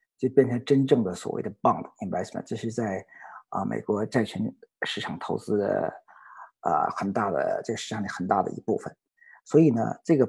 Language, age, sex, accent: Chinese, 50-69, male, native